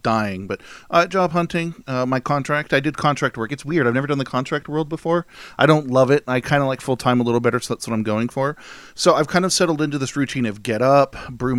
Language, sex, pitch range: English, male, 115-160 Hz